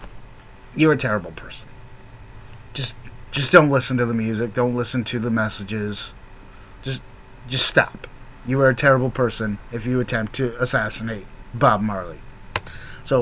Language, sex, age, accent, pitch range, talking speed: English, male, 30-49, American, 110-145 Hz, 145 wpm